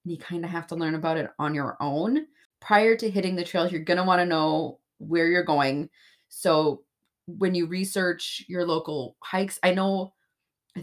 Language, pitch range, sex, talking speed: English, 155-185 Hz, female, 190 wpm